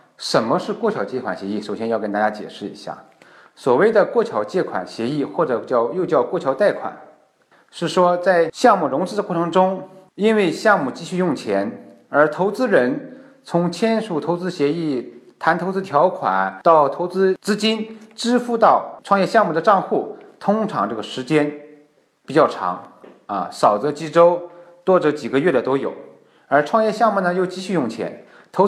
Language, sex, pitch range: Chinese, male, 140-195 Hz